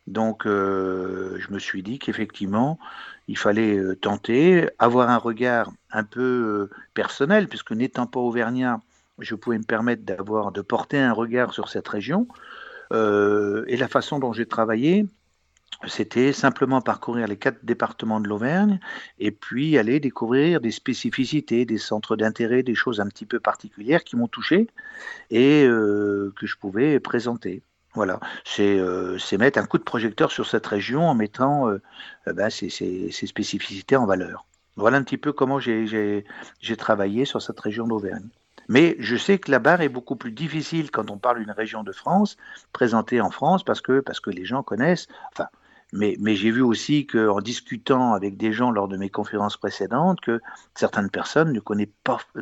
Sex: male